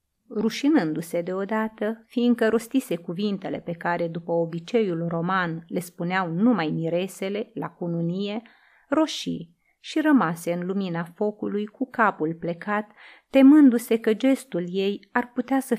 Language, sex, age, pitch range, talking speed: Romanian, female, 30-49, 175-240 Hz, 120 wpm